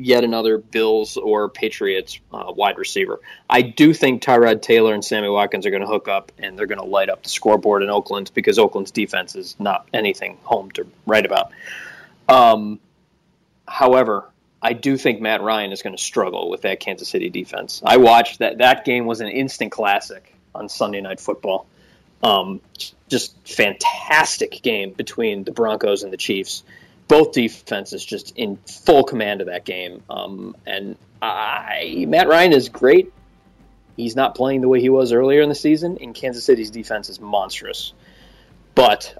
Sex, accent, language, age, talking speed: male, American, English, 20-39, 175 wpm